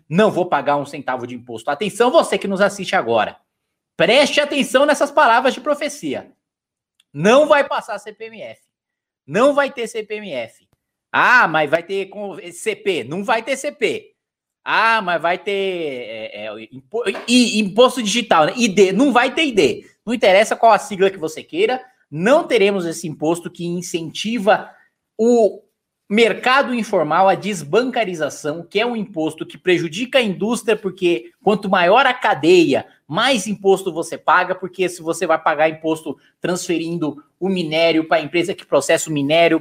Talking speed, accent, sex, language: 150 wpm, Brazilian, male, Portuguese